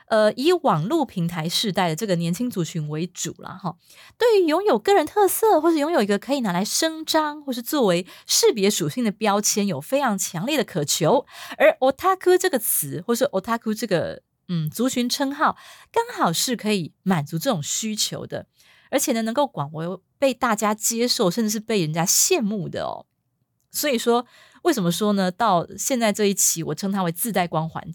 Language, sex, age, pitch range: Chinese, female, 30-49, 180-295 Hz